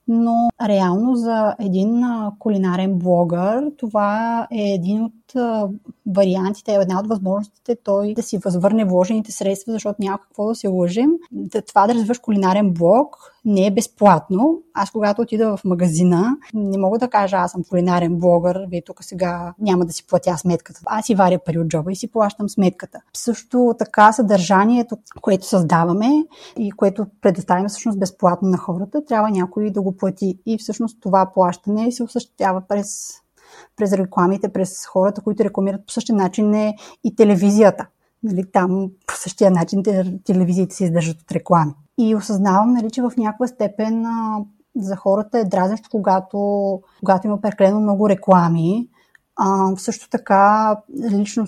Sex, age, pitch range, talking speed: female, 30-49, 185-220 Hz, 155 wpm